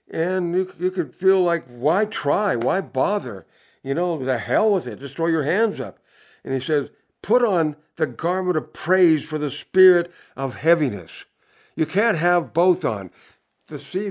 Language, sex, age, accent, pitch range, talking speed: English, male, 60-79, American, 135-185 Hz, 175 wpm